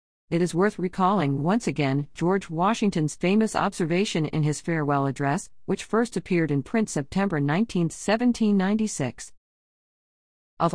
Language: English